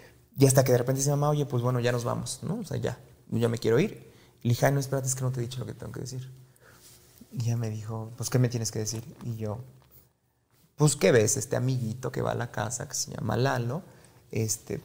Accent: Mexican